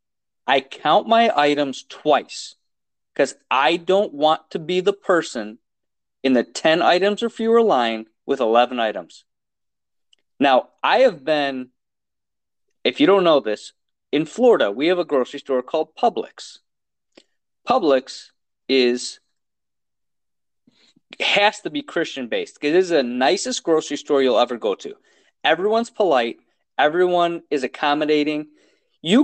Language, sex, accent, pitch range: English, male, American, 145-230 Hz